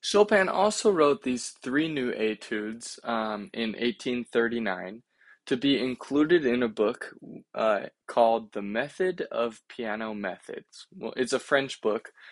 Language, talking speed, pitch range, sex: English, 135 wpm, 110-130 Hz, male